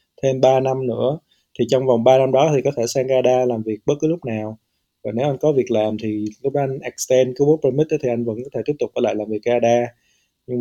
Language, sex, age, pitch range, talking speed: Vietnamese, male, 20-39, 115-140 Hz, 265 wpm